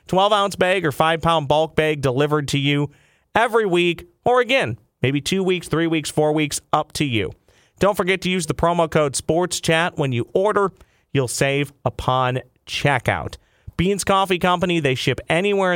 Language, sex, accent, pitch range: English, male, American, 120-175 Hz